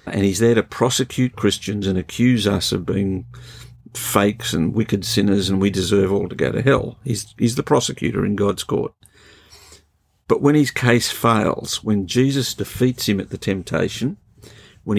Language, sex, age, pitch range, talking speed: English, male, 50-69, 100-120 Hz, 170 wpm